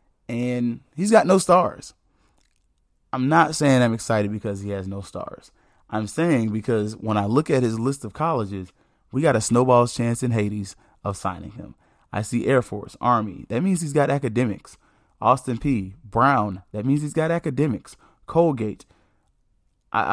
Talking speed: 165 wpm